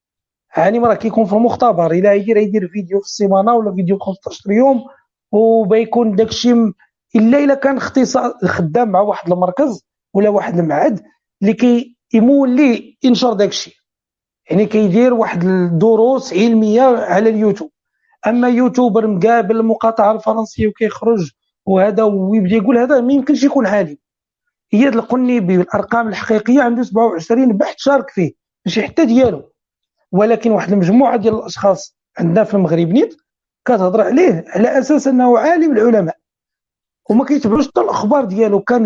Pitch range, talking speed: 200-250 Hz, 140 wpm